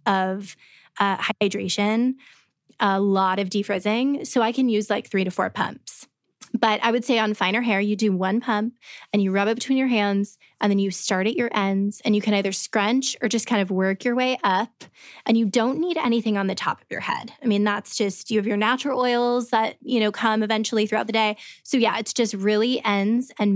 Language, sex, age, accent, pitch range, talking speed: English, female, 20-39, American, 200-230 Hz, 225 wpm